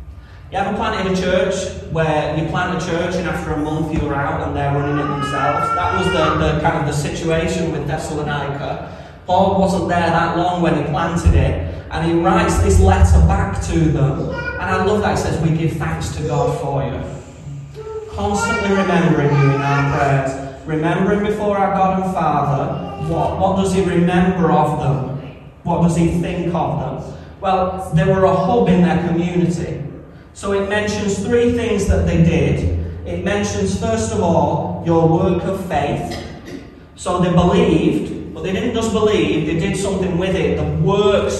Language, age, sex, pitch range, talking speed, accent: English, 30-49, male, 140-185 Hz, 185 wpm, British